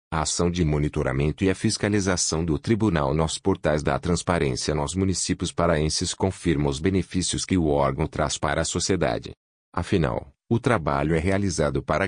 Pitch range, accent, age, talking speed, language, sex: 75-95 Hz, Brazilian, 40-59, 160 wpm, Portuguese, male